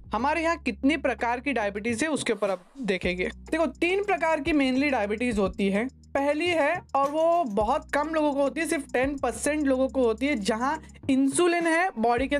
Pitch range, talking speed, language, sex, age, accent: 205-275 Hz, 125 wpm, Hindi, female, 20-39, native